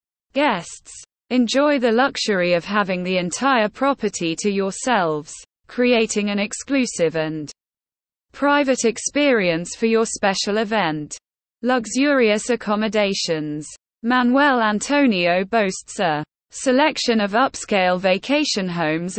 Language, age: English, 20-39